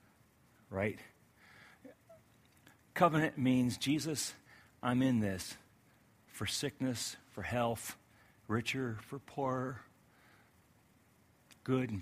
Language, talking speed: English, 80 wpm